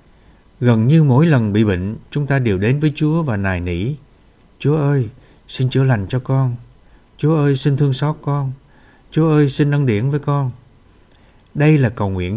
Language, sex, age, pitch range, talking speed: Vietnamese, male, 60-79, 110-150 Hz, 190 wpm